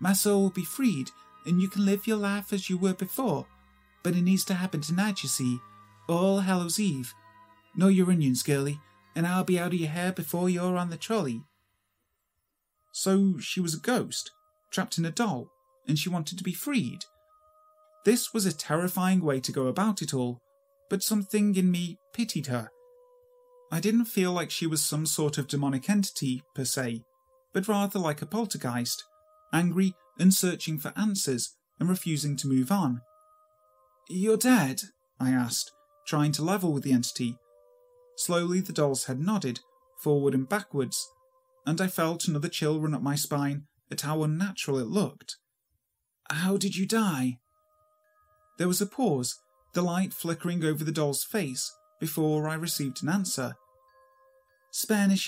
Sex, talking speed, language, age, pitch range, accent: male, 165 wpm, English, 30-49, 145-205 Hz, British